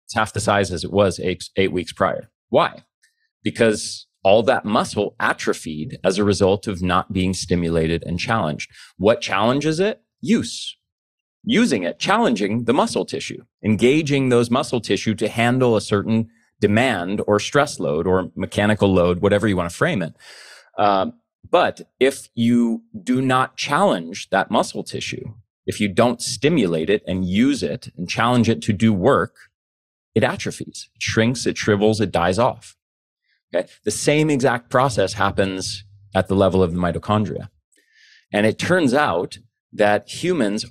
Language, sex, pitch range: English, male, 95-120 Hz